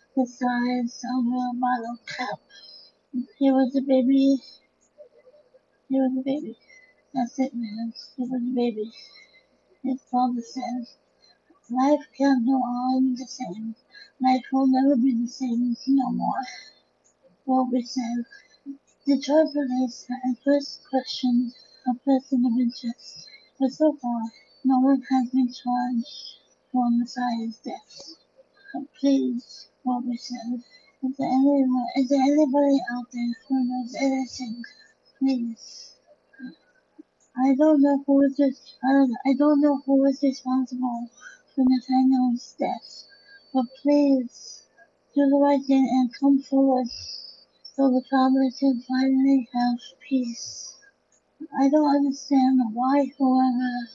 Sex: female